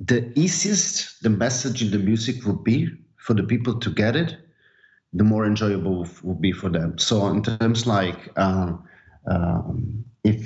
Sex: male